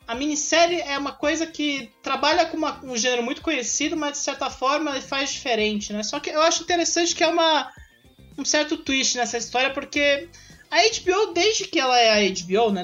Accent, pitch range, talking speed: Brazilian, 195-295 Hz, 205 wpm